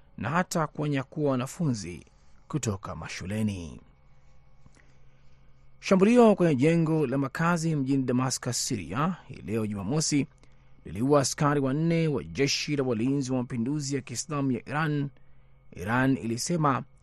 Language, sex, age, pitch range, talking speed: Swahili, male, 30-49, 115-150 Hz, 115 wpm